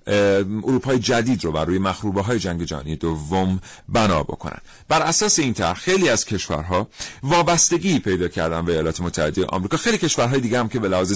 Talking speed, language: 170 wpm, Persian